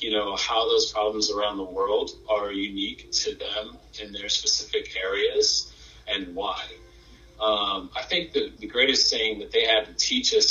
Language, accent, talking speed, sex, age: English, American, 175 wpm, male, 30-49